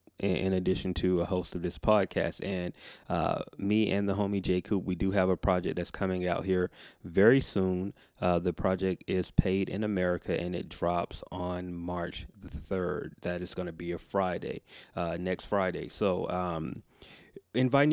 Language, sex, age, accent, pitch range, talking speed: English, male, 30-49, American, 90-105 Hz, 175 wpm